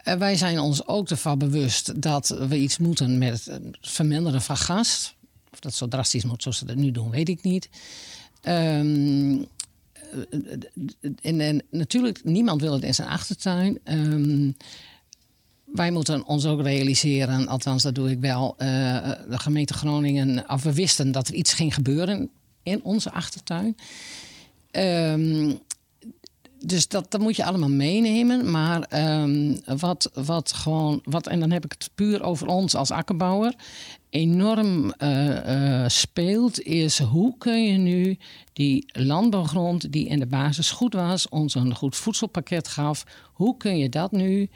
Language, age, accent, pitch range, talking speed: Dutch, 50-69, Dutch, 140-180 Hz, 155 wpm